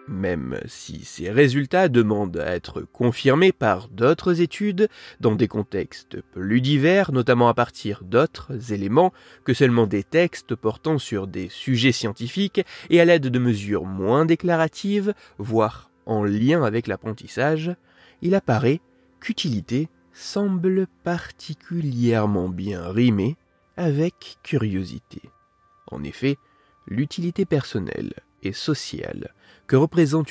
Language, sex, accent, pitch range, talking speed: French, male, French, 110-185 Hz, 115 wpm